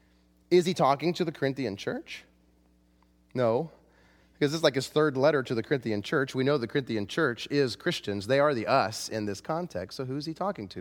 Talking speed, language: 205 wpm, English